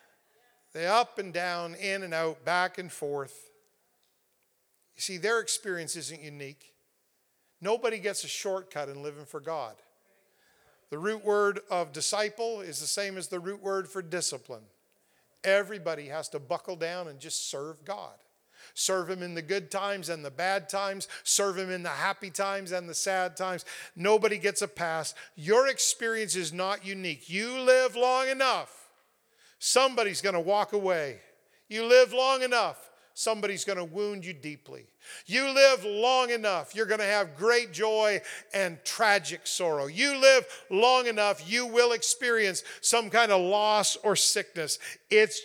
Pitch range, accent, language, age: 175-230 Hz, American, English, 50-69